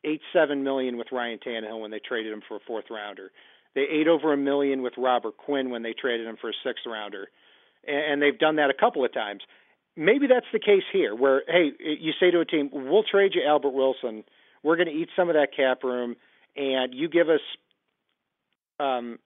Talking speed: 215 wpm